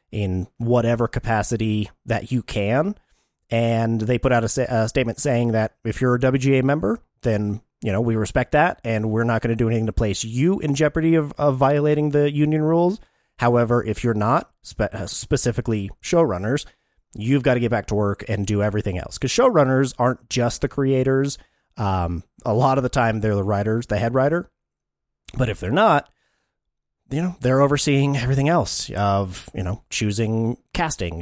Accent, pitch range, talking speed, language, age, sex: American, 105-135 Hz, 180 wpm, English, 30-49, male